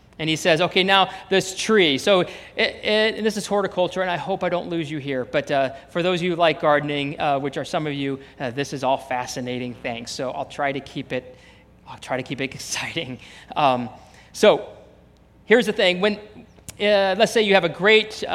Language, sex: English, male